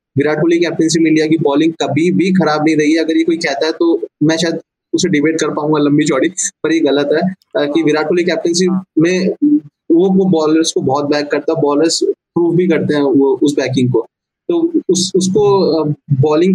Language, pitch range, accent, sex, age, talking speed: Hindi, 150-175 Hz, native, male, 20-39, 165 wpm